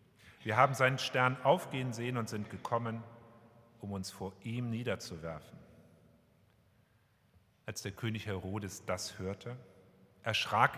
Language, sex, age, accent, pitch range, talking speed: German, male, 40-59, German, 105-125 Hz, 115 wpm